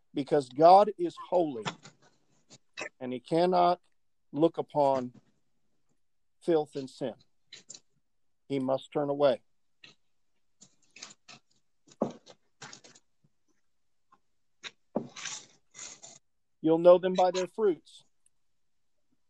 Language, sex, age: English, male, 50-69